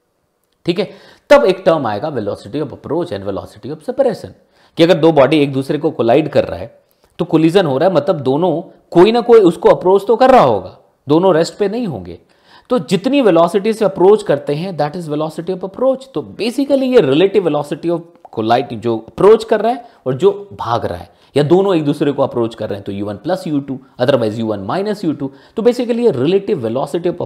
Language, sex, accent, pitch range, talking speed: Hindi, male, native, 145-210 Hz, 205 wpm